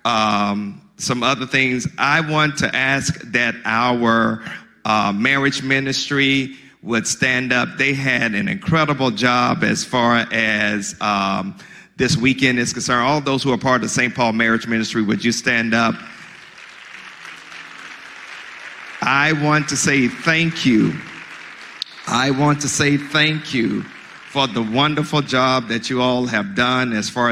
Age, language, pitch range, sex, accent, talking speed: 50-69, English, 115-135 Hz, male, American, 145 wpm